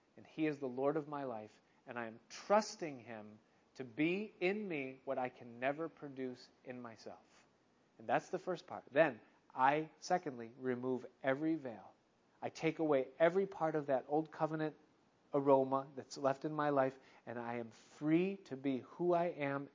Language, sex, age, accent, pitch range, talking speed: English, male, 40-59, American, 125-155 Hz, 180 wpm